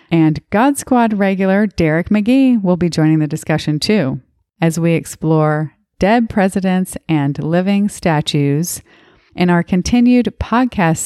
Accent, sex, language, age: American, female, English, 30-49